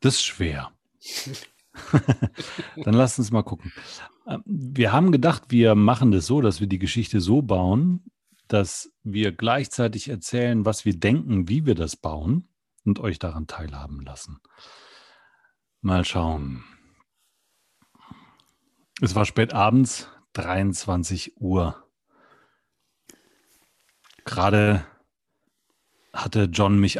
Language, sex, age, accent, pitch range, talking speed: German, male, 40-59, German, 95-125 Hz, 110 wpm